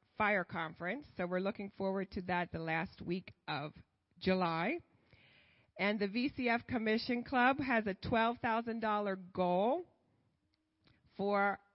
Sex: female